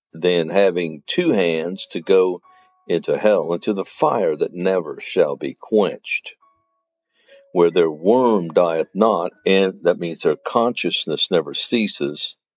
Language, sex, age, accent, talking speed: English, male, 60-79, American, 135 wpm